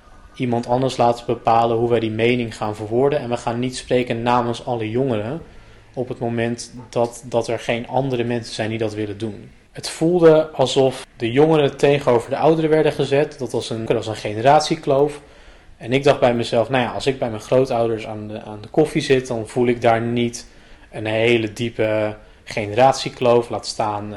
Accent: Dutch